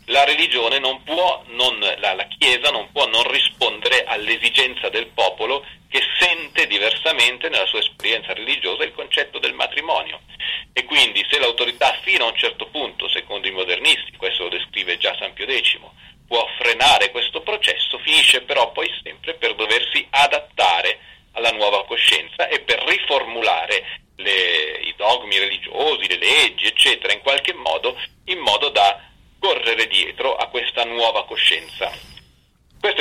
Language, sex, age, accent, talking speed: Italian, male, 40-59, native, 140 wpm